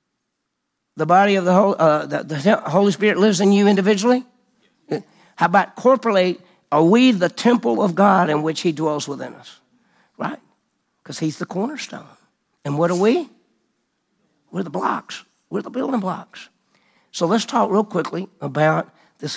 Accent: American